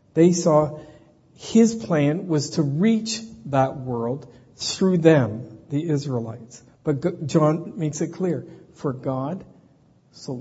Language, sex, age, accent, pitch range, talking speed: English, male, 60-79, American, 125-155 Hz, 125 wpm